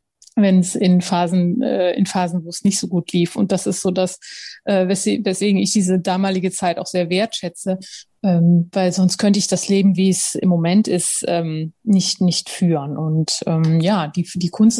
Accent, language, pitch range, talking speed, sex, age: German, German, 180-215 Hz, 205 wpm, female, 30-49